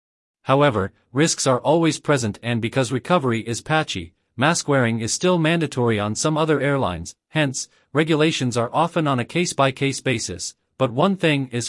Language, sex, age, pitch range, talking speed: English, male, 40-59, 115-155 Hz, 160 wpm